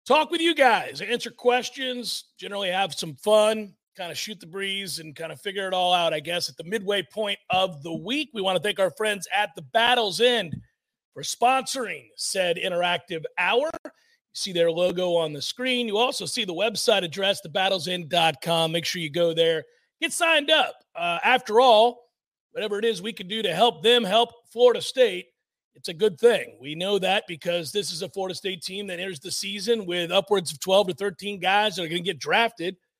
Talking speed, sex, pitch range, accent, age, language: 205 wpm, male, 175-215 Hz, American, 40-59, English